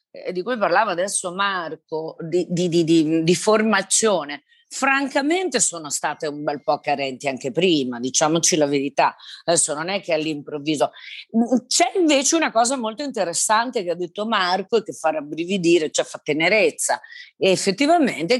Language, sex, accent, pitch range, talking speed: Italian, female, native, 160-230 Hz, 155 wpm